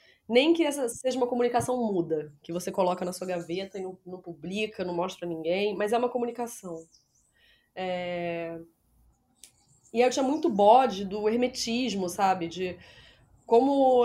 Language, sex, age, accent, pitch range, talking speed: Portuguese, female, 20-39, Brazilian, 170-225 Hz, 155 wpm